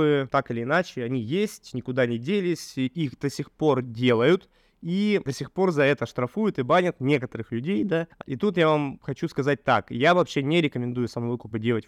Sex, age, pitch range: male, 20-39, 120-150 Hz